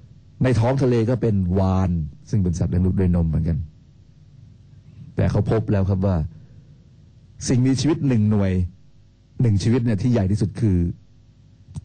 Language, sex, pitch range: Thai, male, 105-130 Hz